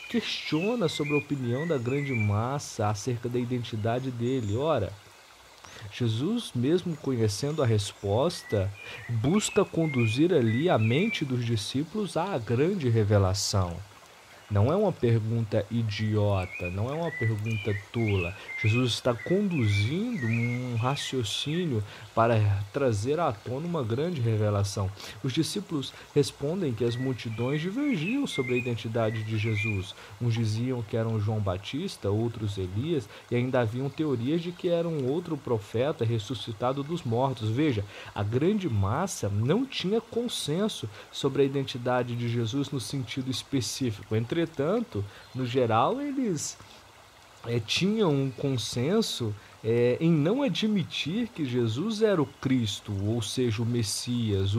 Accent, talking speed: Brazilian, 130 wpm